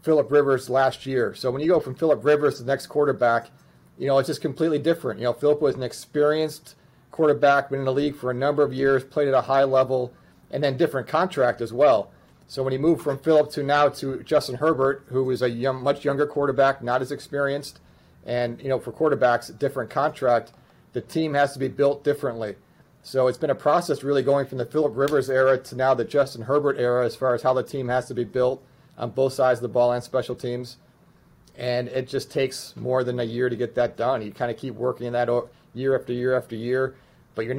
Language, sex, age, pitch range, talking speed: English, male, 40-59, 125-140 Hz, 230 wpm